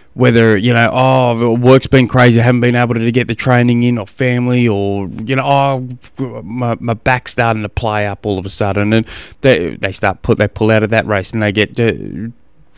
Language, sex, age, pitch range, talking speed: English, male, 20-39, 105-125 Hz, 225 wpm